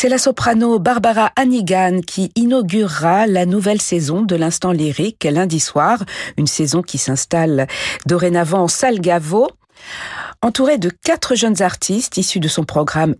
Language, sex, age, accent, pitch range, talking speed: French, female, 50-69, French, 155-220 Hz, 145 wpm